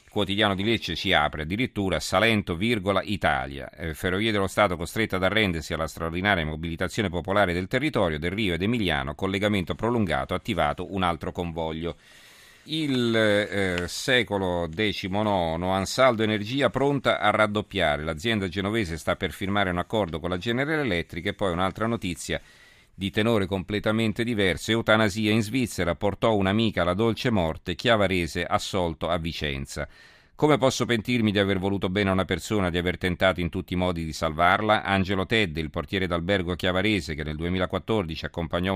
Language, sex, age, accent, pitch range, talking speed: Italian, male, 40-59, native, 85-110 Hz, 155 wpm